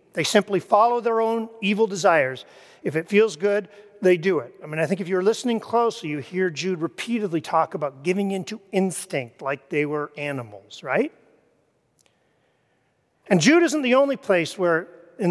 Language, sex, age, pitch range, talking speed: English, male, 40-59, 155-205 Hz, 175 wpm